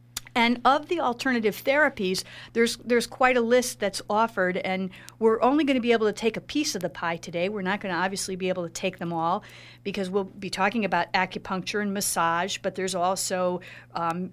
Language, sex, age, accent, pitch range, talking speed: English, female, 50-69, American, 175-210 Hz, 210 wpm